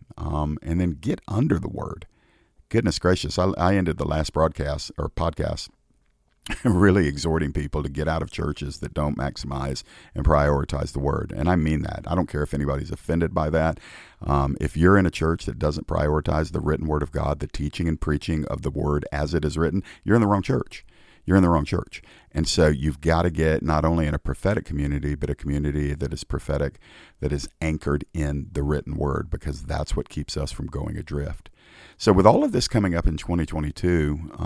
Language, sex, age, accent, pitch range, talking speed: English, male, 50-69, American, 75-85 Hz, 210 wpm